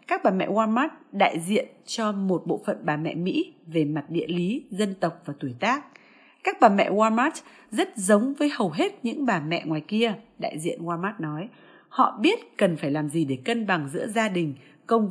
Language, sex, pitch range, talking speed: Vietnamese, female, 170-260 Hz, 210 wpm